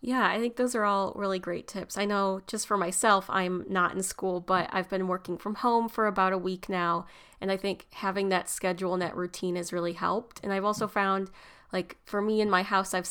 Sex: female